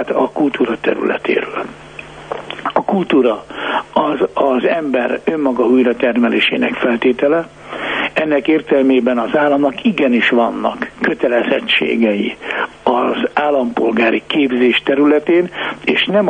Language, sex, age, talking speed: Hungarian, male, 60-79, 90 wpm